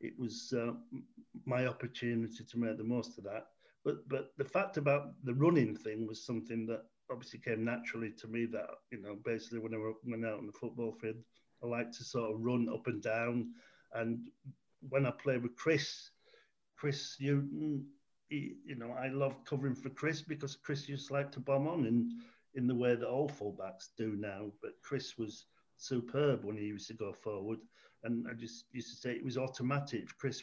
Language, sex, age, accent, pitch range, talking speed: English, male, 50-69, British, 115-135 Hz, 200 wpm